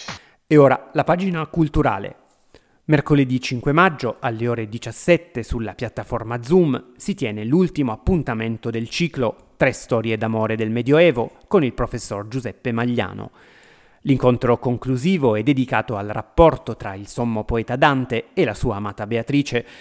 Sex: male